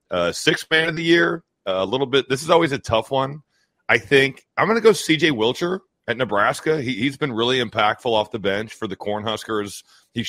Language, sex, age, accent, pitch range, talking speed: English, male, 40-59, American, 100-125 Hz, 210 wpm